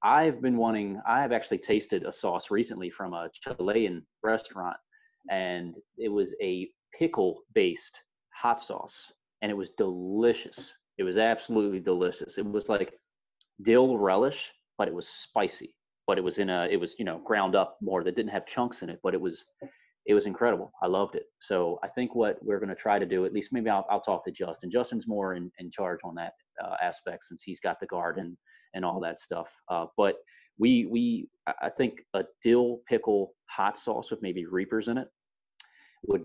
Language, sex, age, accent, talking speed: English, male, 30-49, American, 195 wpm